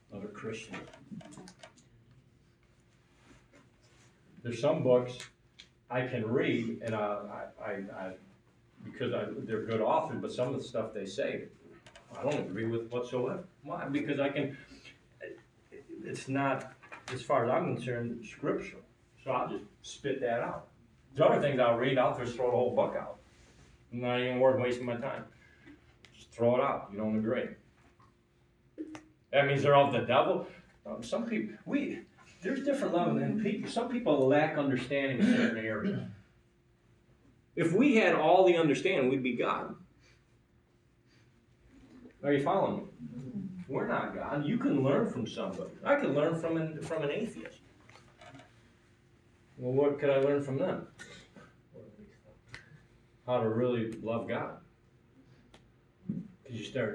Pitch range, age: 120-145 Hz, 40-59